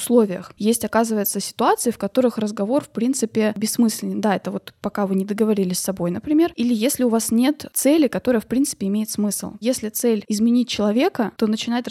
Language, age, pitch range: Russian, 20-39, 205-245 Hz